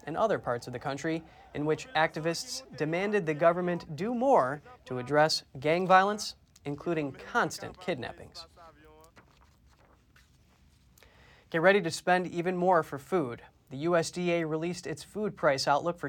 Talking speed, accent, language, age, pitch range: 140 wpm, American, English, 20-39, 140-180 Hz